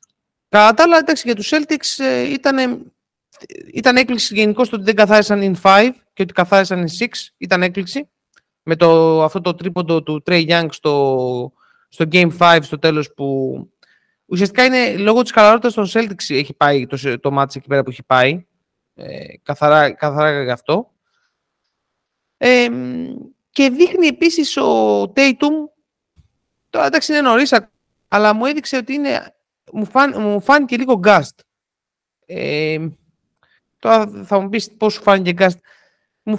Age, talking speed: 30-49, 140 wpm